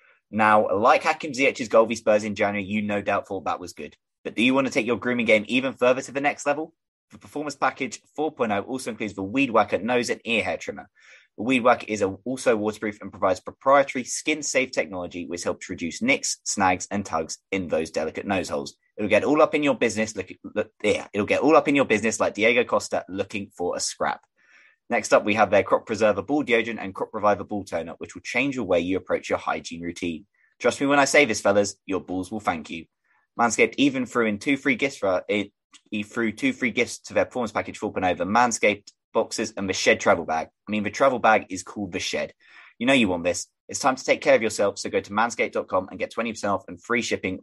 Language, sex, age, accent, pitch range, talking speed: English, male, 20-39, British, 100-135 Hz, 240 wpm